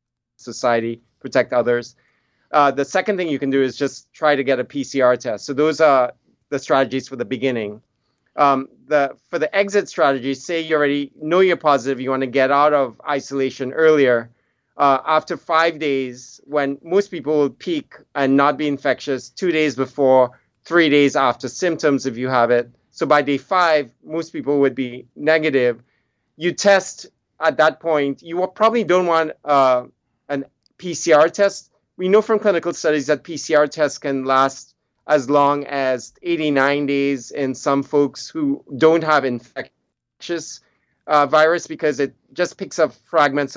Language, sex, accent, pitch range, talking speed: English, male, American, 130-160 Hz, 170 wpm